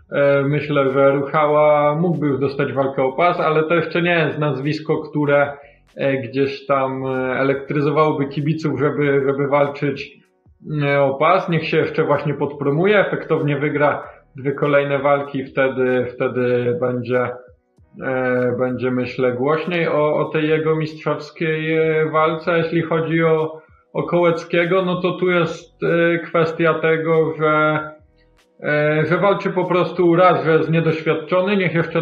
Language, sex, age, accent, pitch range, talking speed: Polish, male, 20-39, native, 135-160 Hz, 130 wpm